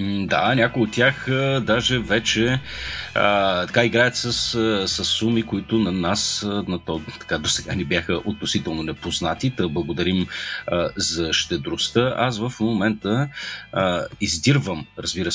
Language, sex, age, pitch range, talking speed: Bulgarian, male, 30-49, 100-120 Hz, 140 wpm